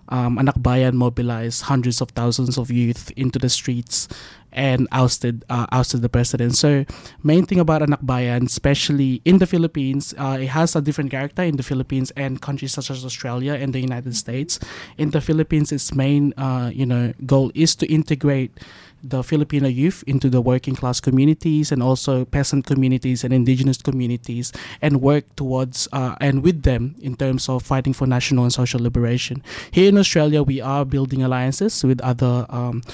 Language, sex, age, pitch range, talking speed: English, male, 20-39, 125-145 Hz, 180 wpm